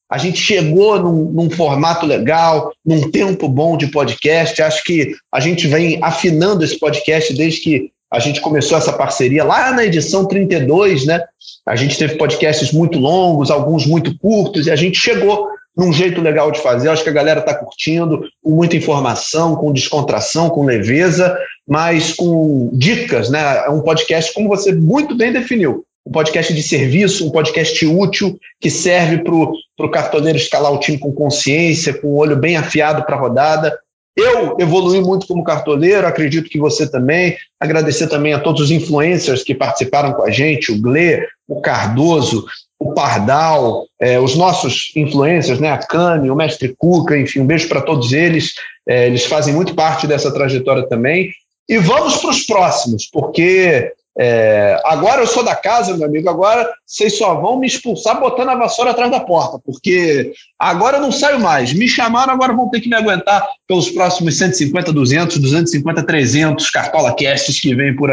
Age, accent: 40-59, Brazilian